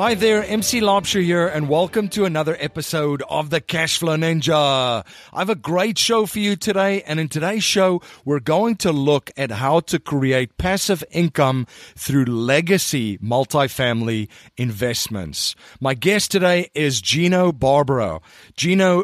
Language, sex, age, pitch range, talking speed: English, male, 40-59, 130-170 Hz, 150 wpm